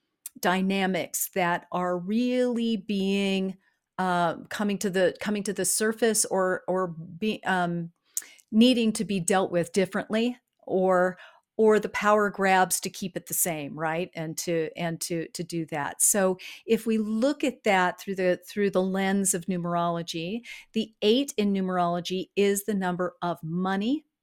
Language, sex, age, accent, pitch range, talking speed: English, female, 50-69, American, 180-220 Hz, 155 wpm